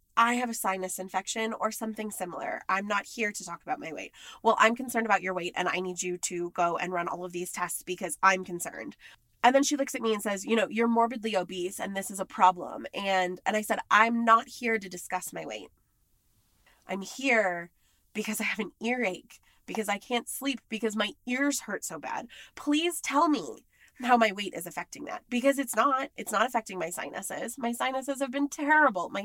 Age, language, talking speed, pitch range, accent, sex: 20-39, English, 215 wpm, 190-260 Hz, American, female